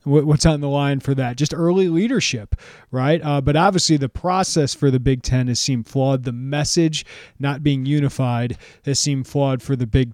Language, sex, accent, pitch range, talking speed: English, male, American, 130-170 Hz, 195 wpm